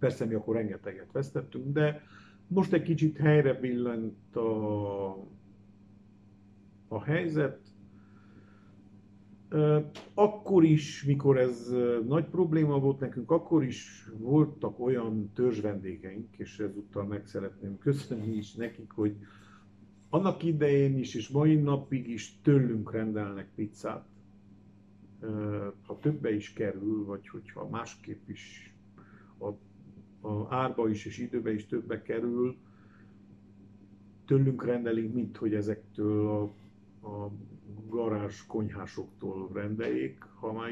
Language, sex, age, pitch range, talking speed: Hungarian, male, 50-69, 100-125 Hz, 110 wpm